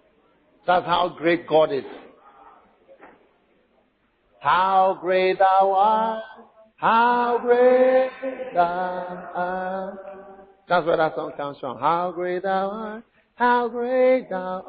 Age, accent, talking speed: 50-69, American, 105 wpm